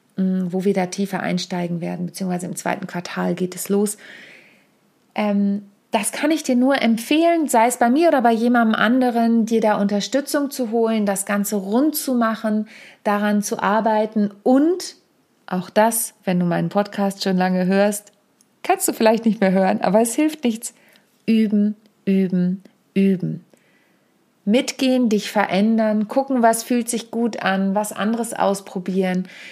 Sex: female